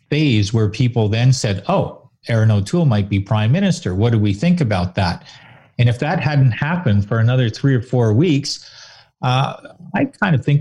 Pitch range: 105-140 Hz